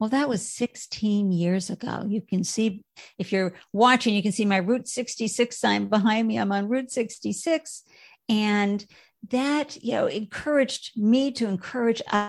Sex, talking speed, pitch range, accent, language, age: female, 160 wpm, 195-240 Hz, American, English, 50-69